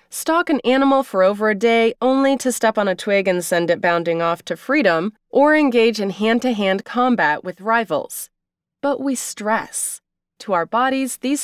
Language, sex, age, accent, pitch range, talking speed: English, female, 20-39, American, 185-270 Hz, 180 wpm